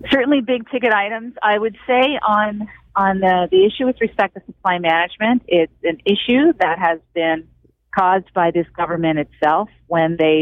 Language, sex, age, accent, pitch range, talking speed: English, female, 40-59, American, 155-195 Hz, 165 wpm